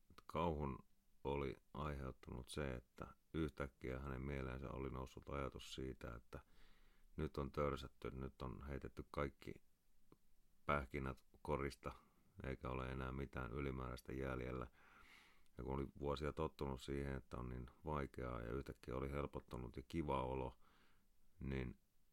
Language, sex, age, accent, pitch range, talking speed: Finnish, male, 30-49, native, 65-70 Hz, 125 wpm